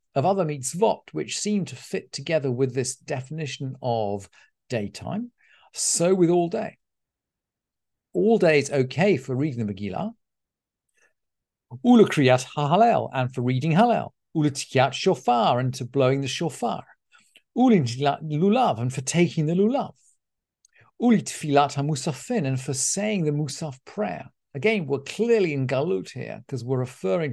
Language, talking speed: English, 130 wpm